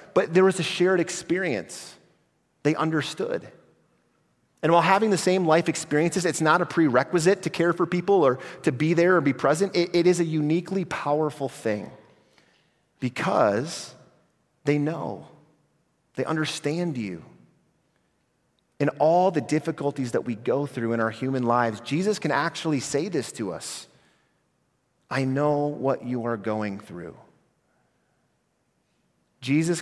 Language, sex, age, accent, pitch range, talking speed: English, male, 30-49, American, 115-160 Hz, 140 wpm